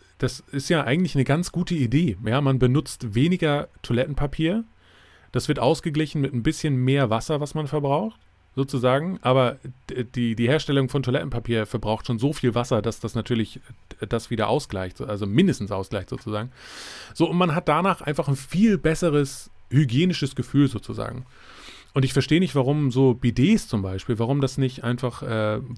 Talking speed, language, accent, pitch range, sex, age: 165 wpm, German, German, 110-140 Hz, male, 30-49